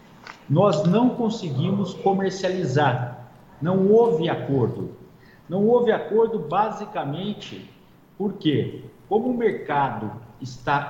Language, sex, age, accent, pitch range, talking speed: Portuguese, male, 50-69, Brazilian, 150-210 Hz, 90 wpm